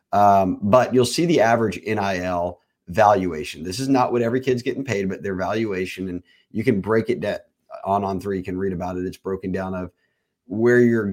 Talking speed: 210 wpm